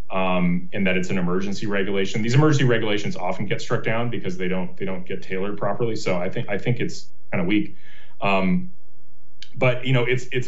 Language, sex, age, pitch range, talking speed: English, male, 30-49, 90-125 Hz, 210 wpm